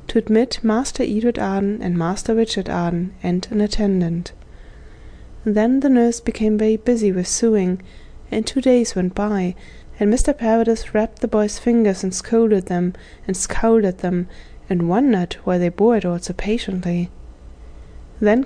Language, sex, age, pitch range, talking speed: English, female, 20-39, 180-225 Hz, 160 wpm